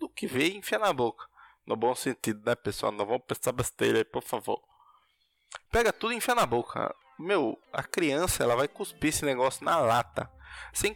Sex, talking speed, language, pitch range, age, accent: male, 190 wpm, Portuguese, 105-155 Hz, 20-39, Brazilian